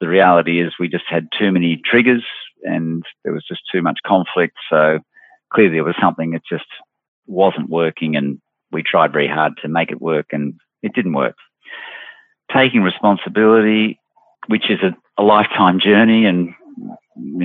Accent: Australian